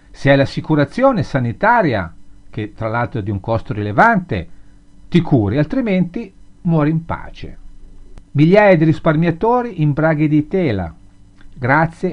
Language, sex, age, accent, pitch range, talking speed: Italian, male, 50-69, native, 110-175 Hz, 130 wpm